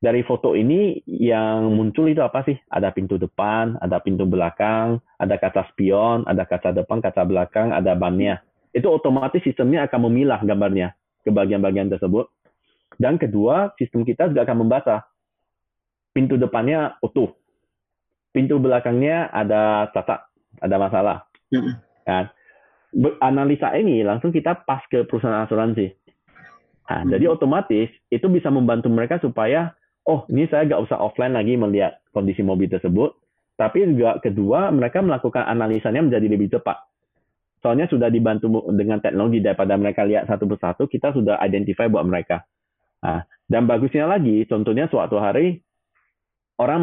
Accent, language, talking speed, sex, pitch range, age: native, Indonesian, 140 wpm, male, 105-140 Hz, 30-49